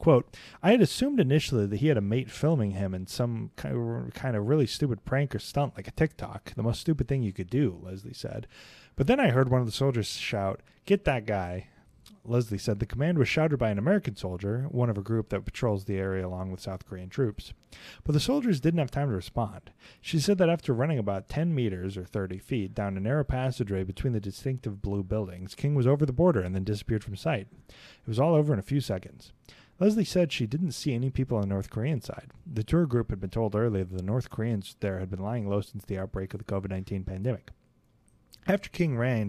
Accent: American